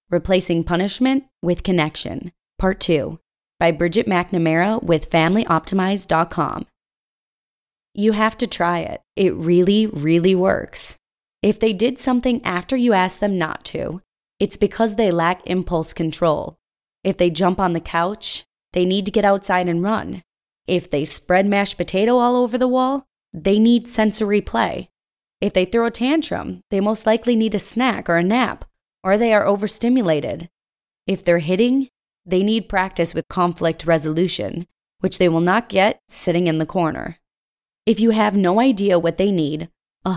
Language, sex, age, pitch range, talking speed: English, female, 20-39, 170-215 Hz, 160 wpm